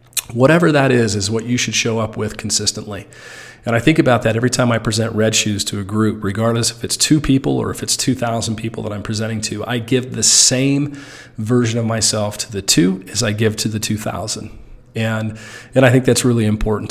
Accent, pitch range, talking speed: American, 110-125 Hz, 220 wpm